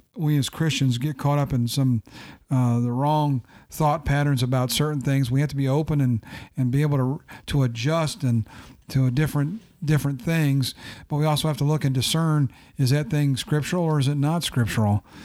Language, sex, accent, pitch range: English, male, American, 120-140 Hz